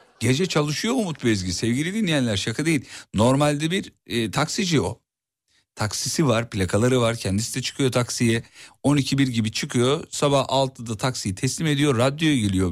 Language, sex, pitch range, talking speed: Turkish, male, 100-135 Hz, 145 wpm